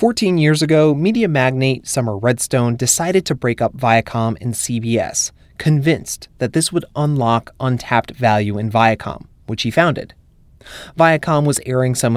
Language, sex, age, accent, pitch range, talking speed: English, male, 30-49, American, 110-140 Hz, 150 wpm